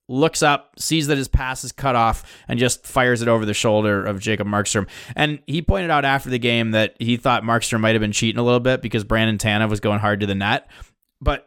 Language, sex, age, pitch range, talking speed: English, male, 20-39, 105-130 Hz, 245 wpm